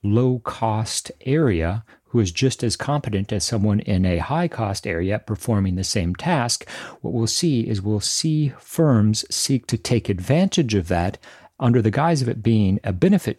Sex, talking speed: male, 170 wpm